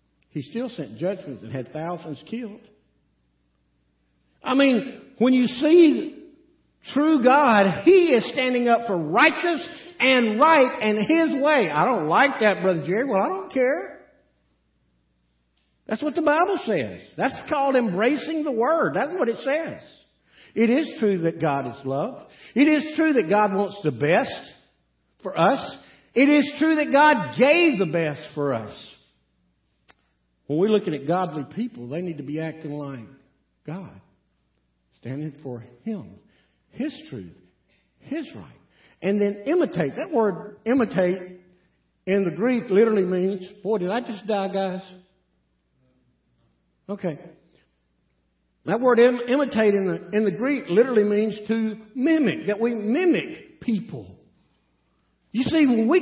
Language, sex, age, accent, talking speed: English, male, 50-69, American, 145 wpm